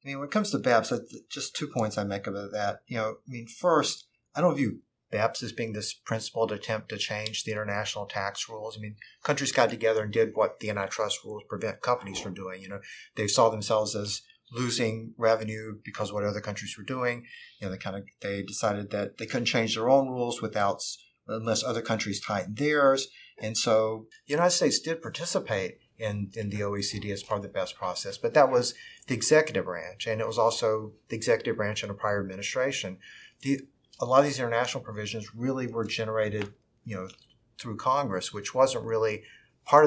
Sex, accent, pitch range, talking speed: male, American, 100-120 Hz, 205 wpm